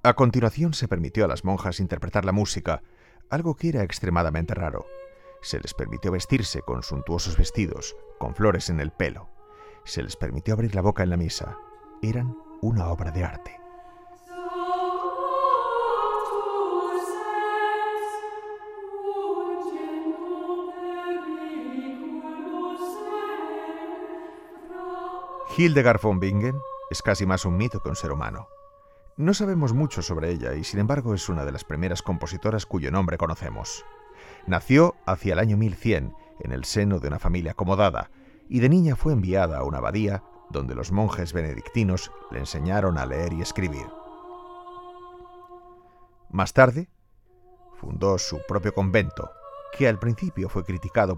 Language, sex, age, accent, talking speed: Spanish, male, 40-59, Spanish, 130 wpm